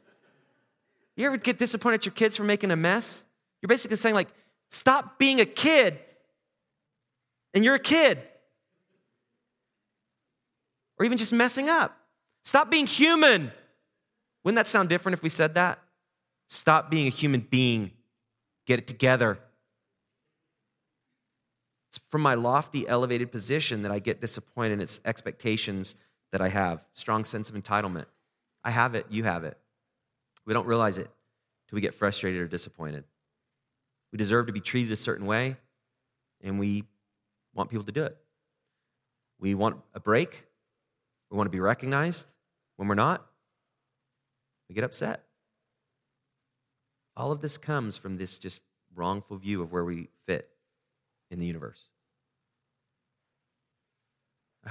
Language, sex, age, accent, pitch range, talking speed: English, male, 30-49, American, 105-160 Hz, 145 wpm